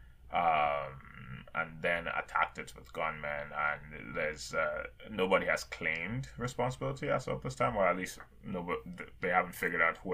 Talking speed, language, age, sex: 160 wpm, English, 20-39, male